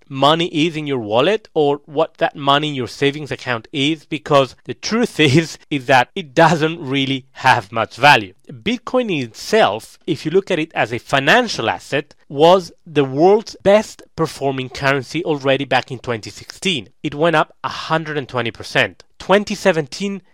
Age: 30-49